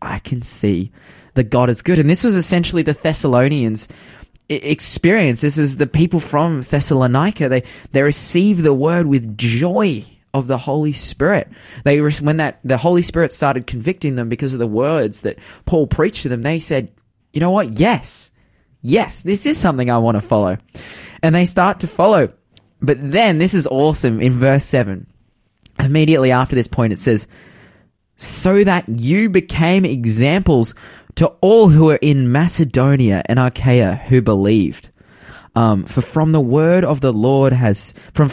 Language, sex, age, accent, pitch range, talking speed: English, male, 20-39, Australian, 125-175 Hz, 170 wpm